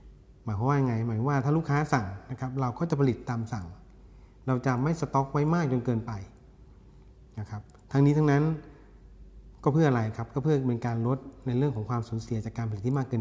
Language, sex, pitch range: Thai, male, 115-140 Hz